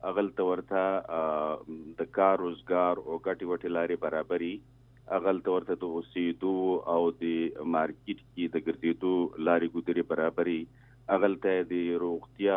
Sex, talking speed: male, 140 wpm